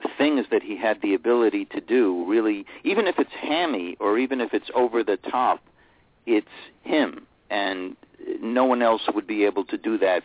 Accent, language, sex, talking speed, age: American, English, male, 185 wpm, 50-69